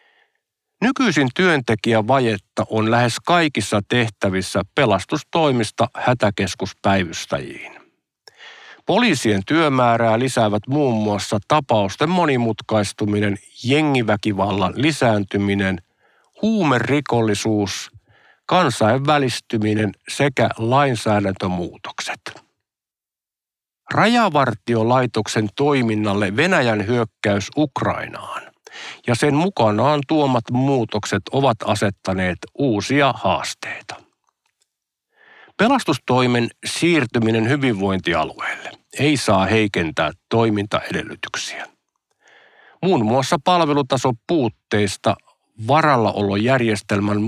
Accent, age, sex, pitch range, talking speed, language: native, 50-69, male, 105-140 Hz, 60 wpm, Finnish